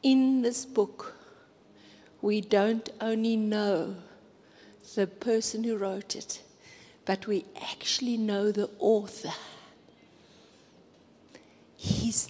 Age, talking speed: 50-69, 95 wpm